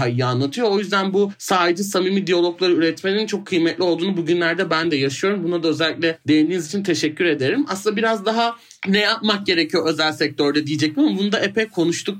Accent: native